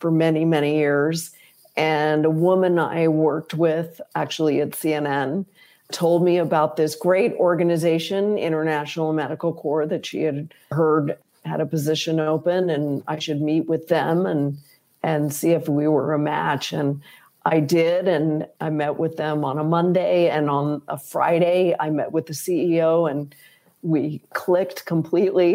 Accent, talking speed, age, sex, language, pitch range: American, 160 wpm, 50-69, female, English, 155-180 Hz